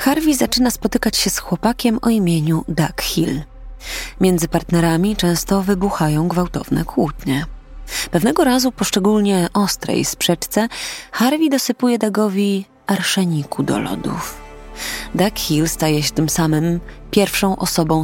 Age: 20-39